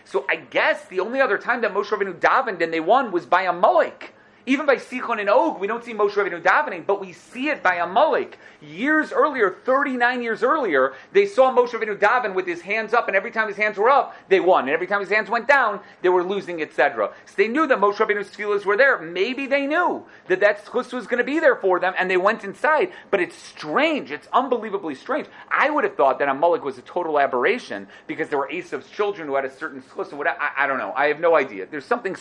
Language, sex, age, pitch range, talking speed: English, male, 30-49, 170-275 Hz, 240 wpm